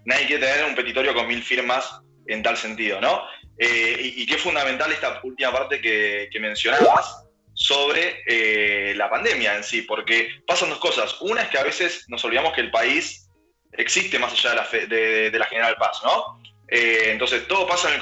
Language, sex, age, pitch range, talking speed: Spanish, male, 20-39, 105-140 Hz, 205 wpm